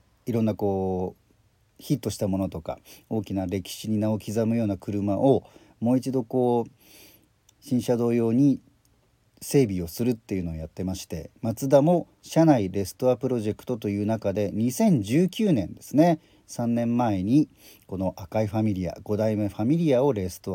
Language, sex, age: Japanese, male, 40-59